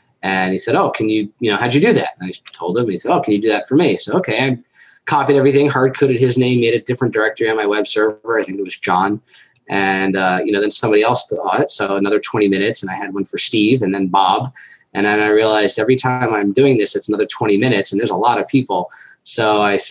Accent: American